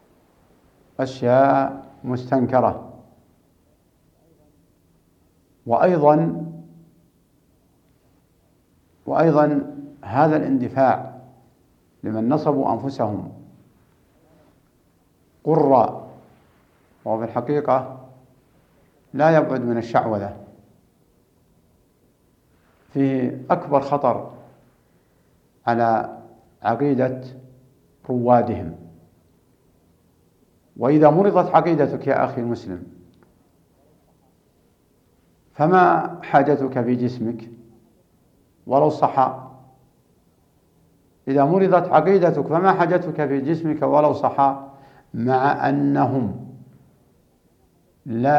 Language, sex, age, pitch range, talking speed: Arabic, male, 60-79, 115-150 Hz, 55 wpm